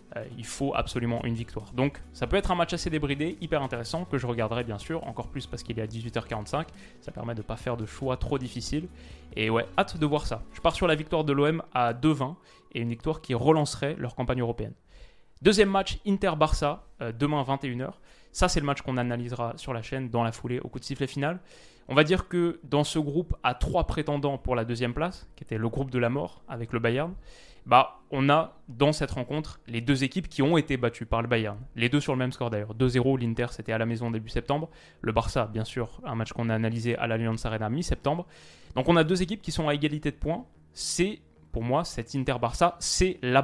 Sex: male